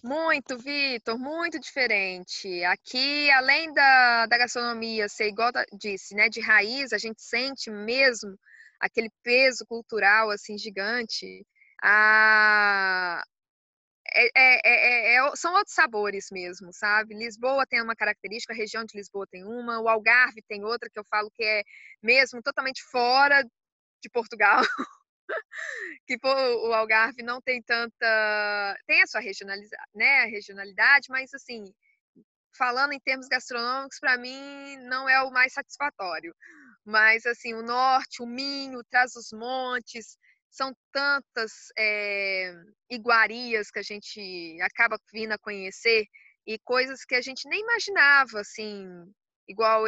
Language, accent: Portuguese, Brazilian